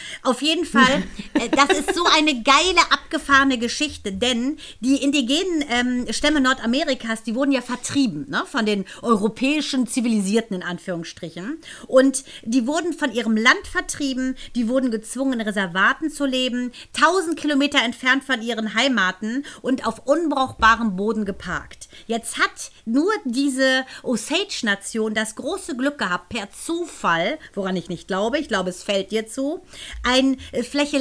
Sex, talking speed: female, 145 wpm